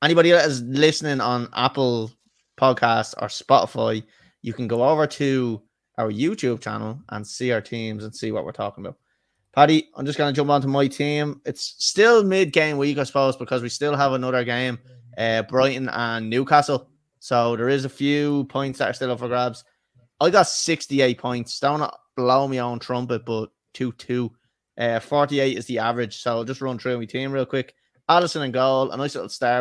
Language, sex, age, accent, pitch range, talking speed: English, male, 20-39, Irish, 120-145 Hz, 195 wpm